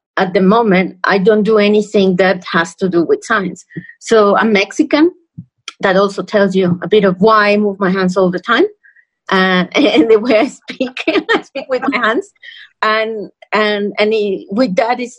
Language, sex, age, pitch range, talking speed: English, female, 30-49, 195-240 Hz, 195 wpm